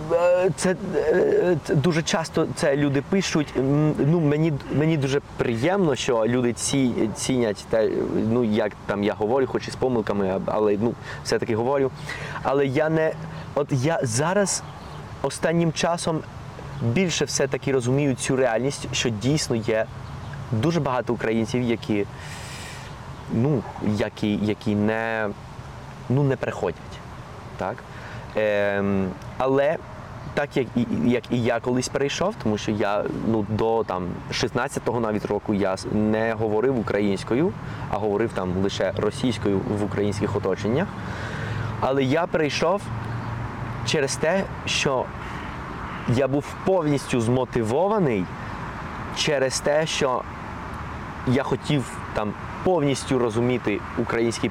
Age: 20-39